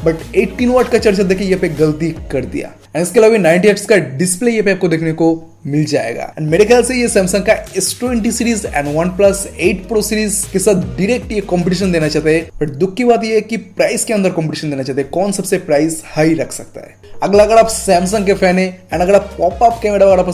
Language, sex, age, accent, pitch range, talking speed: Hindi, male, 20-39, native, 165-210 Hz, 90 wpm